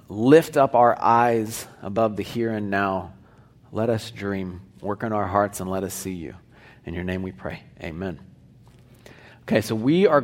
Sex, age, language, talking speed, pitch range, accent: male, 40-59, English, 180 wpm, 110-145 Hz, American